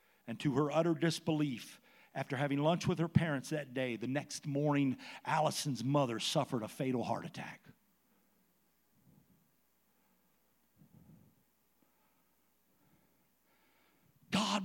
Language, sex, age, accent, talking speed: English, male, 60-79, American, 100 wpm